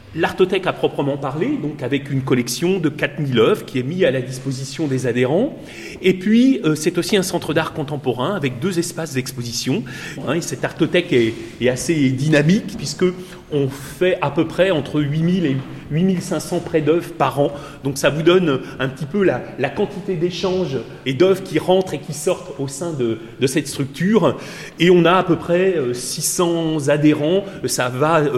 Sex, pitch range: male, 135-185 Hz